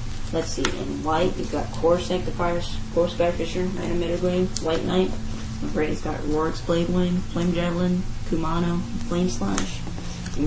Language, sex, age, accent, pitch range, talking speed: English, female, 20-39, American, 115-165 Hz, 155 wpm